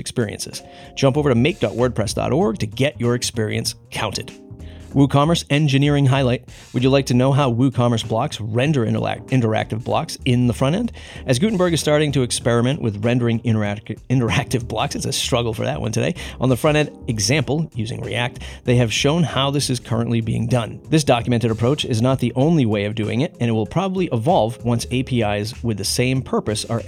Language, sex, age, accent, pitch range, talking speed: English, male, 30-49, American, 115-140 Hz, 185 wpm